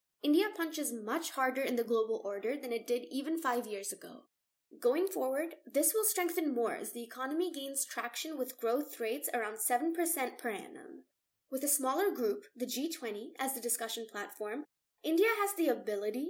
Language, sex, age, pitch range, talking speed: English, female, 10-29, 225-300 Hz, 175 wpm